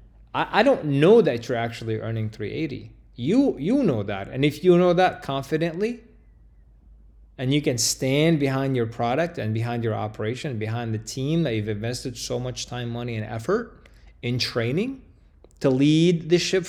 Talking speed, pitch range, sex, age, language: 170 wpm, 110-140 Hz, male, 20-39, English